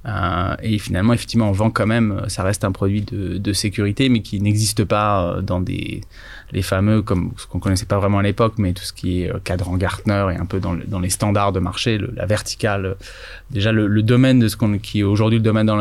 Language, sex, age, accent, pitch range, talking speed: French, male, 20-39, French, 95-115 Hz, 245 wpm